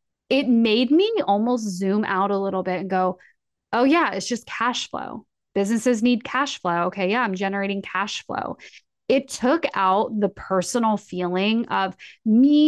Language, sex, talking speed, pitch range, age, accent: English, female, 165 wpm, 200-255 Hz, 20-39, American